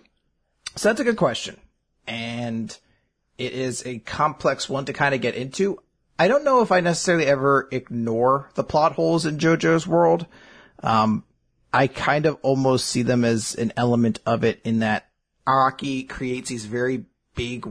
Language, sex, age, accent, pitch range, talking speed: English, male, 30-49, American, 110-135 Hz, 165 wpm